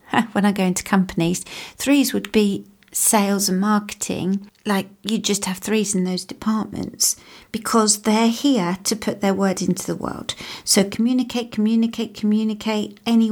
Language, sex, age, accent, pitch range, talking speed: English, female, 40-59, British, 190-225 Hz, 155 wpm